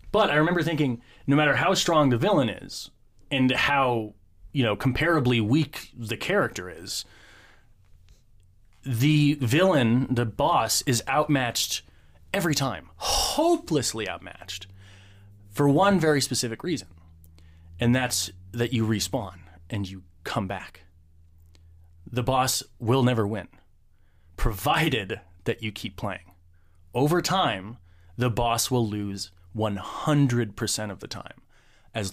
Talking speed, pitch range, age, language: 120 wpm, 95-130 Hz, 30-49, English